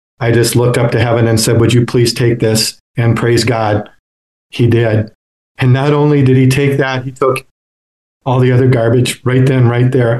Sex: male